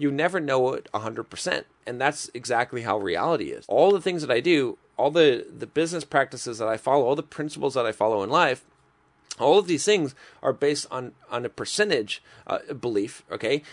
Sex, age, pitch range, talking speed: male, 30-49, 140-190 Hz, 200 wpm